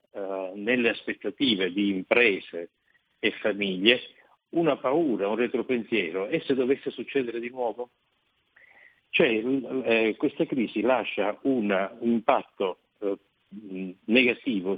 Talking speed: 95 wpm